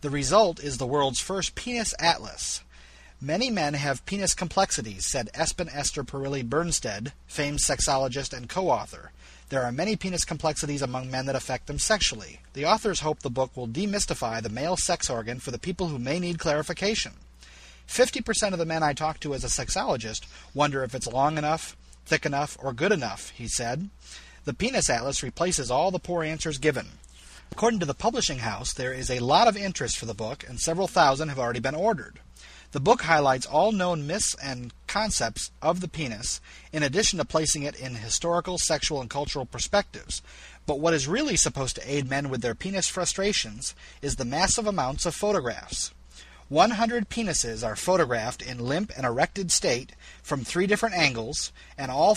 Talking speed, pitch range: 185 wpm, 120-175 Hz